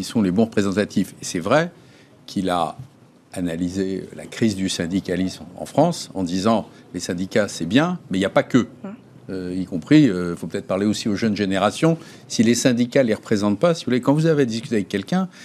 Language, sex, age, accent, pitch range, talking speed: French, male, 50-69, French, 100-155 Hz, 220 wpm